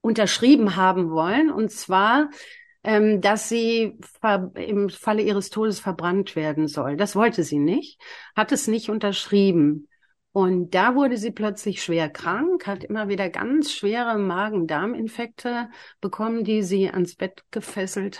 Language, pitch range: German, 175-215 Hz